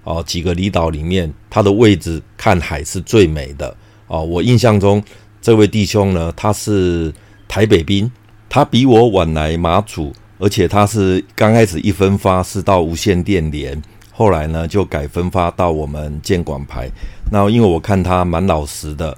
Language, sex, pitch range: Chinese, male, 80-105 Hz